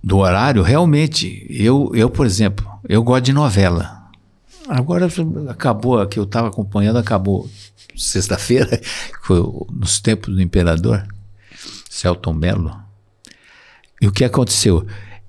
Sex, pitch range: male, 100-130 Hz